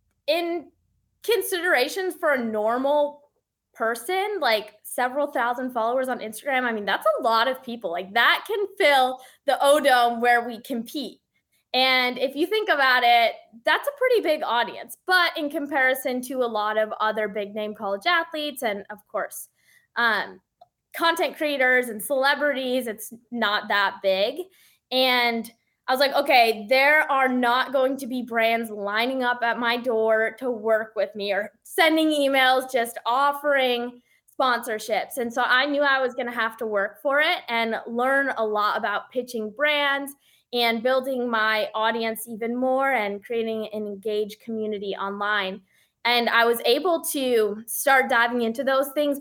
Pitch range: 225-280 Hz